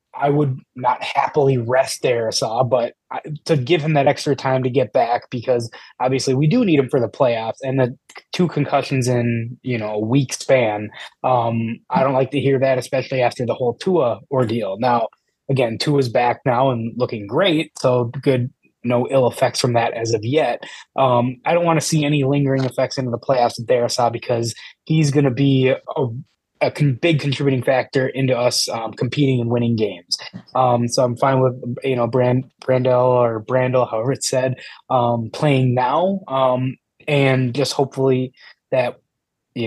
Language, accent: English, American